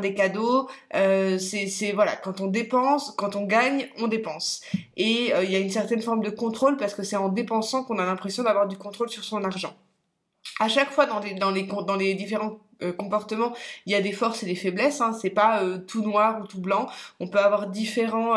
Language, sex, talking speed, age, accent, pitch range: French, female, 215 wpm, 20-39, French, 195-230 Hz